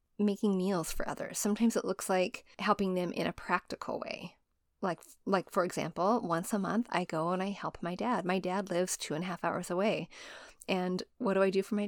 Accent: American